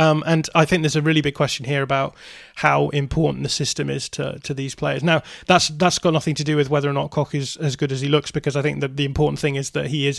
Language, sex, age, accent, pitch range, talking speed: English, male, 20-39, British, 135-150 Hz, 290 wpm